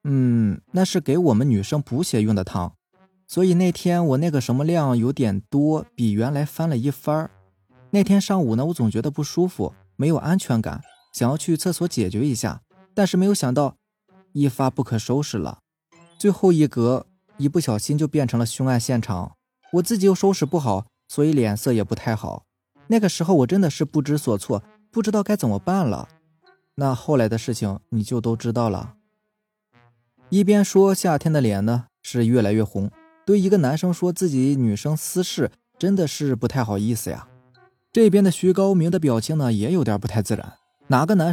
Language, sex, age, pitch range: Chinese, male, 20-39, 120-185 Hz